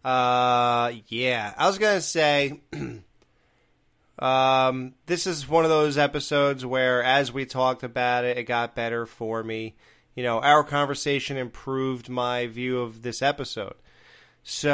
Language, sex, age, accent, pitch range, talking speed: English, male, 30-49, American, 120-140 Hz, 145 wpm